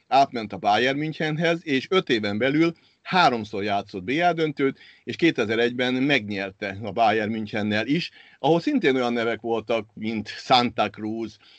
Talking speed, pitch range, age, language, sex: 135 wpm, 105-135 Hz, 50-69, Hungarian, male